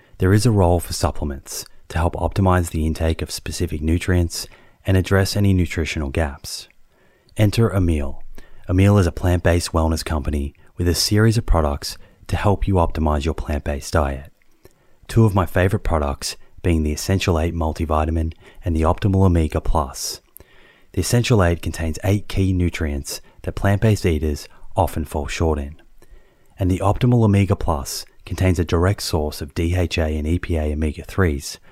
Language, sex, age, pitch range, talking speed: English, male, 30-49, 80-95 Hz, 155 wpm